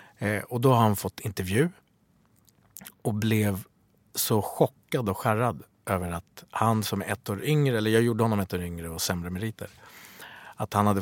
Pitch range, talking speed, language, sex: 95-115 Hz, 185 wpm, English, male